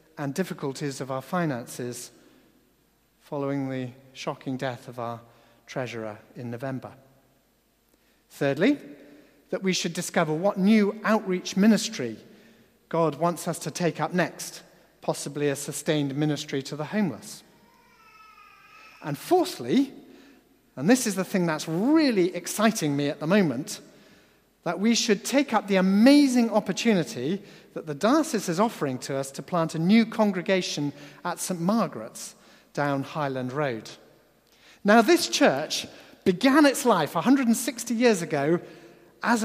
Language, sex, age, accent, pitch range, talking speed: English, male, 40-59, British, 145-225 Hz, 130 wpm